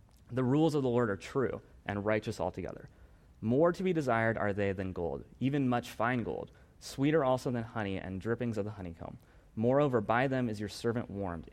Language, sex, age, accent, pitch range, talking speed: English, male, 30-49, American, 100-125 Hz, 200 wpm